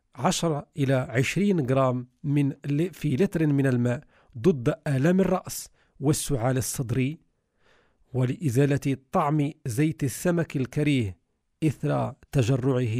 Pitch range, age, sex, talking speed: 130-160 Hz, 50-69, male, 95 wpm